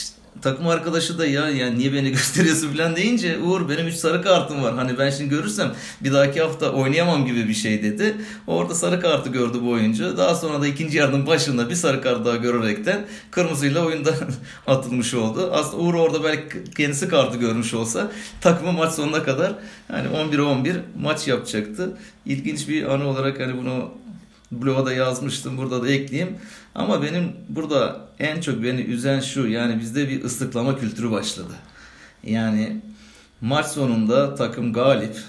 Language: Turkish